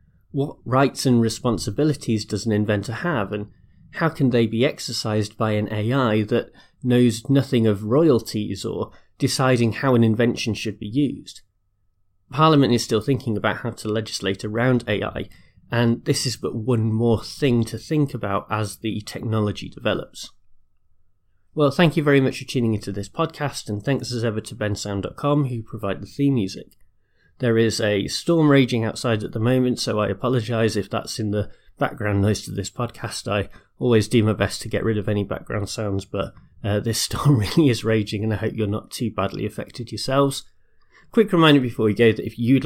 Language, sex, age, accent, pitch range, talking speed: English, male, 30-49, British, 105-130 Hz, 185 wpm